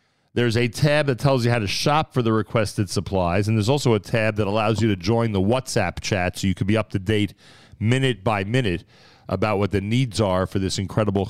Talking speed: 235 wpm